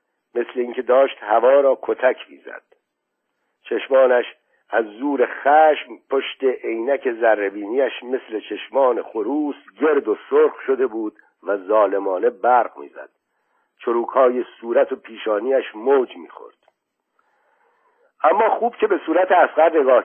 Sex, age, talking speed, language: male, 60-79, 120 wpm, Persian